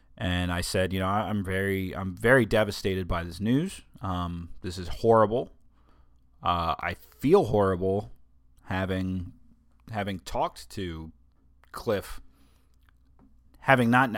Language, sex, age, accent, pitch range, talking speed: English, male, 30-49, American, 85-100 Hz, 120 wpm